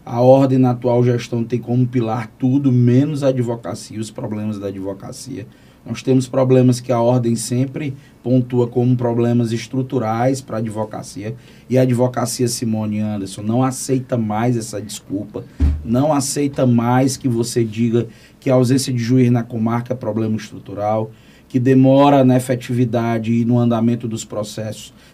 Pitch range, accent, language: 120-135 Hz, Brazilian, Portuguese